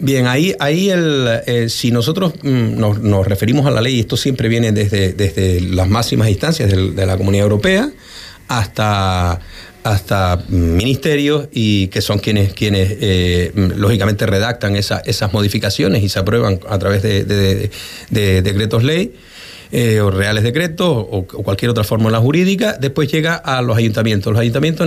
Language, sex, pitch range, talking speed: Spanish, male, 110-145 Hz, 170 wpm